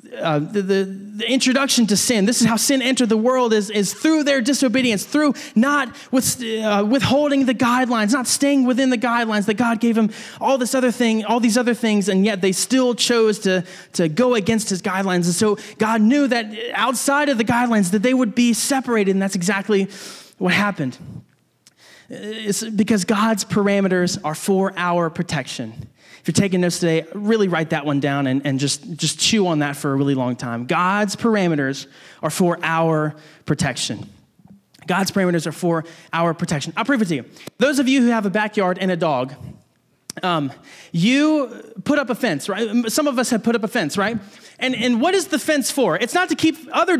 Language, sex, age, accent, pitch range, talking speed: English, male, 20-39, American, 190-260 Hz, 200 wpm